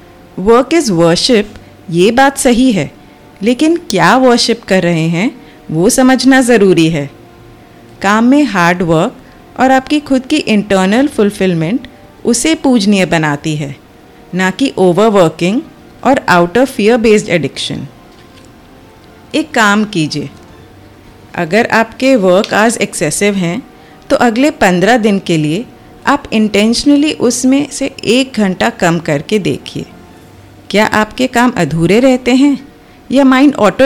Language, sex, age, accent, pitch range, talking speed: Hindi, female, 30-49, native, 170-255 Hz, 130 wpm